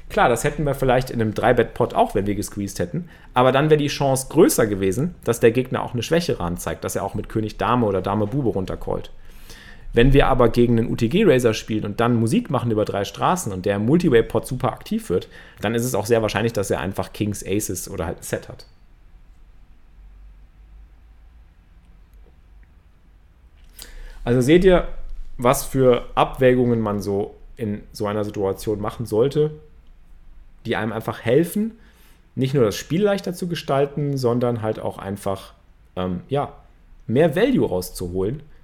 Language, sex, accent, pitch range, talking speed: German, male, German, 95-135 Hz, 165 wpm